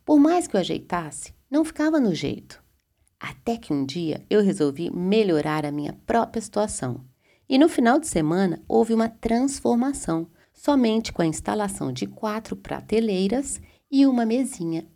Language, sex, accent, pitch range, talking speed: Portuguese, female, Brazilian, 155-230 Hz, 150 wpm